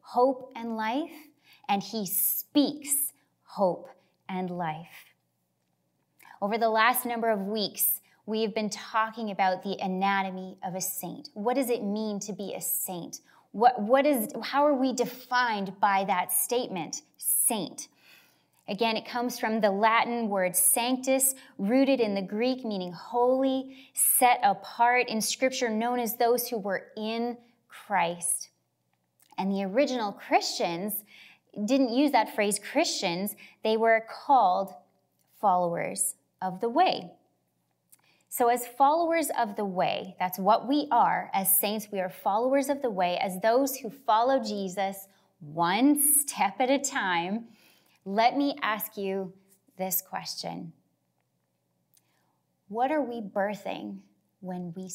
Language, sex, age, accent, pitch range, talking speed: English, female, 20-39, American, 190-250 Hz, 135 wpm